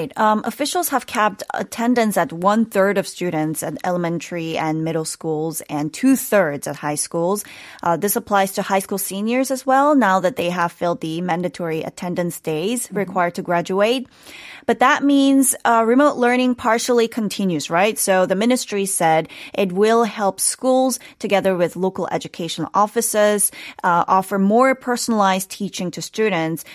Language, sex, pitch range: Korean, female, 165-220 Hz